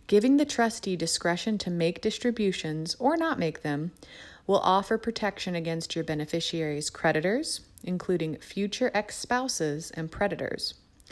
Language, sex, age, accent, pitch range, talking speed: English, female, 30-49, American, 165-225 Hz, 125 wpm